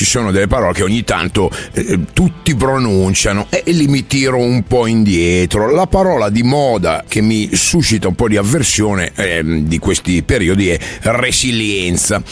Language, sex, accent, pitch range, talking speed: Italian, male, native, 95-125 Hz, 165 wpm